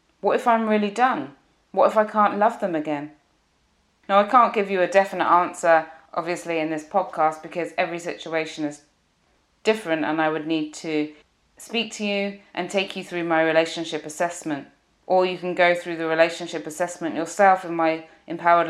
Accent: British